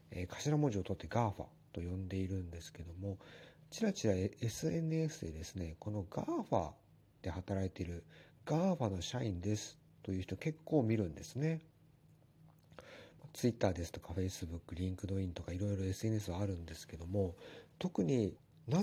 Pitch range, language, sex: 95-150 Hz, Japanese, male